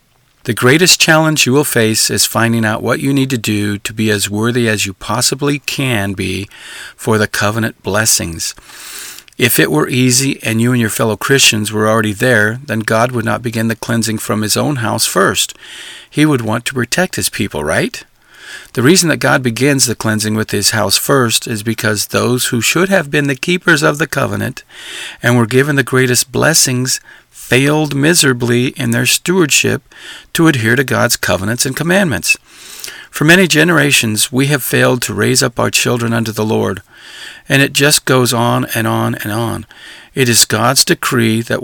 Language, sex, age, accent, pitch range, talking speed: English, male, 50-69, American, 110-135 Hz, 185 wpm